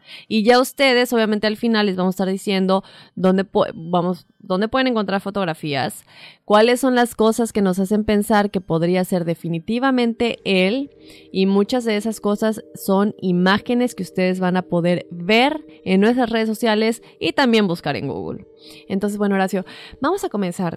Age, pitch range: 20-39, 180-220 Hz